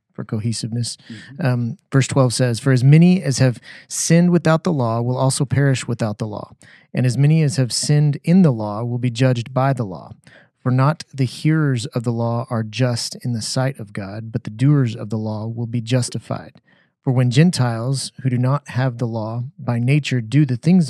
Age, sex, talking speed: 30-49, male, 210 wpm